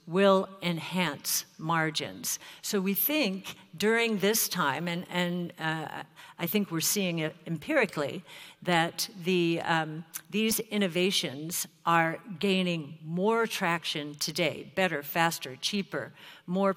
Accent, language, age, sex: American, English, 60-79, female